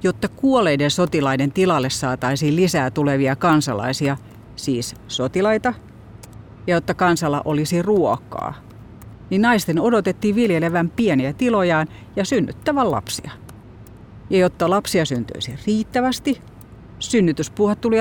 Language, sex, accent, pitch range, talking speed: Finnish, female, native, 115-165 Hz, 105 wpm